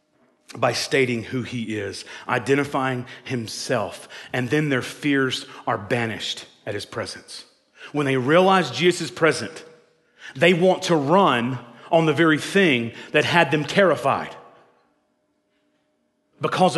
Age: 40-59